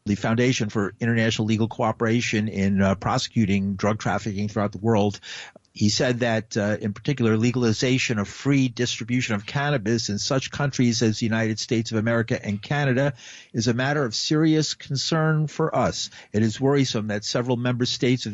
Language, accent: English, American